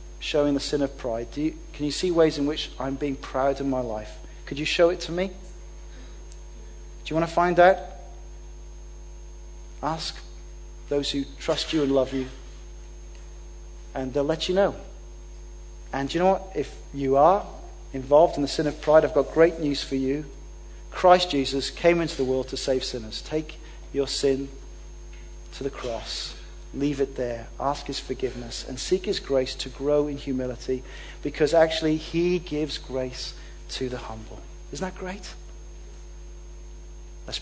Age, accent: 40-59, British